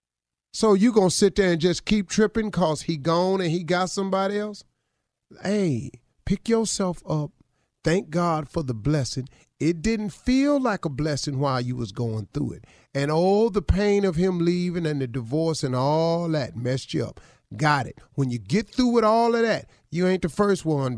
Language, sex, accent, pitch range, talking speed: English, male, American, 120-180 Hz, 205 wpm